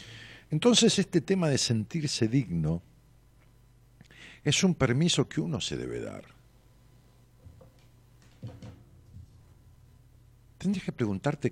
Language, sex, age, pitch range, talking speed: Spanish, male, 50-69, 105-135 Hz, 90 wpm